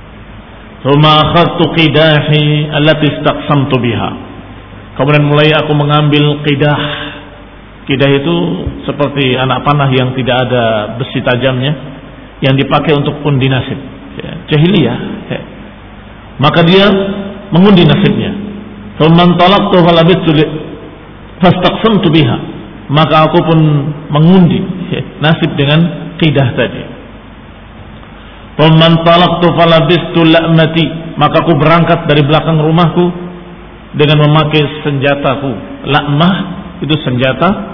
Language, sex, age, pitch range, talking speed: Indonesian, male, 50-69, 130-165 Hz, 75 wpm